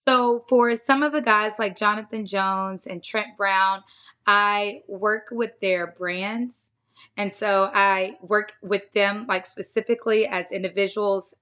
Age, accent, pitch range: 20-39, American, 195-220 Hz